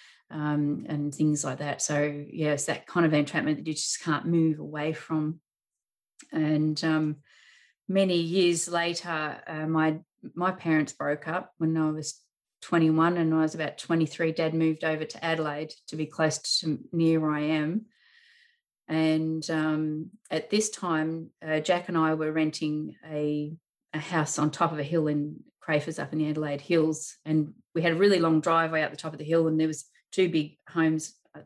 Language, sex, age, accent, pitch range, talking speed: English, female, 30-49, Australian, 150-165 Hz, 190 wpm